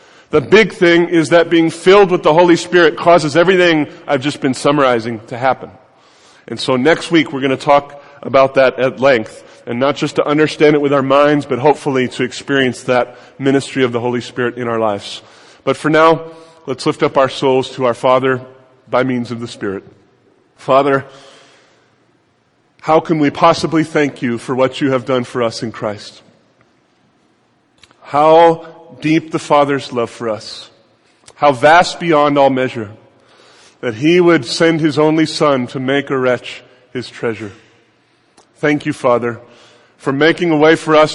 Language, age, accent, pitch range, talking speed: English, 30-49, American, 130-165 Hz, 175 wpm